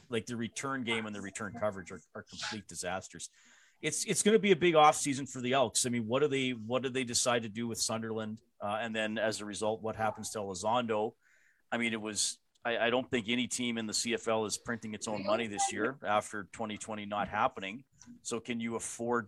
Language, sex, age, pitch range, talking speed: English, male, 40-59, 105-120 Hz, 235 wpm